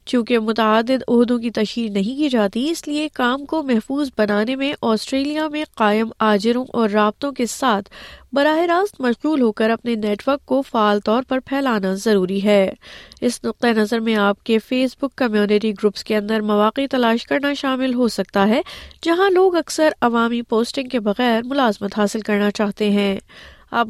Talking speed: 175 wpm